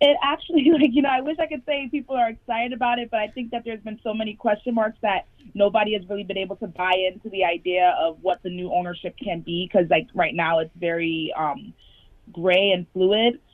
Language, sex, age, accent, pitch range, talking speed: English, female, 20-39, American, 175-210 Hz, 235 wpm